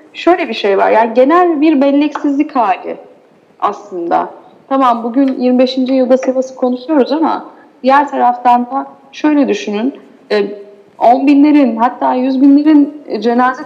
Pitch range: 235-280 Hz